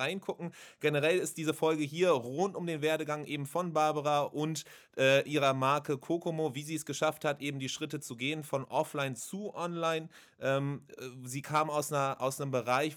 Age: 30-49